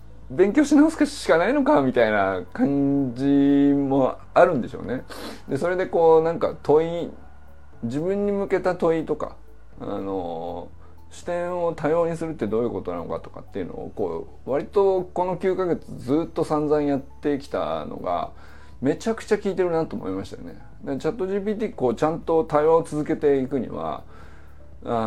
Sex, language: male, Japanese